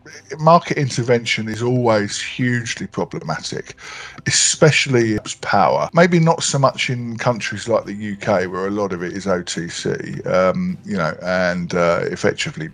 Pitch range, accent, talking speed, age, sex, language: 95-125 Hz, British, 145 wpm, 50-69, male, English